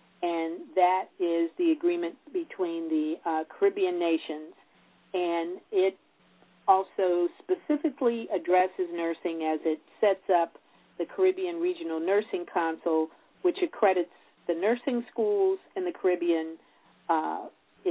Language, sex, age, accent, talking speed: English, female, 50-69, American, 115 wpm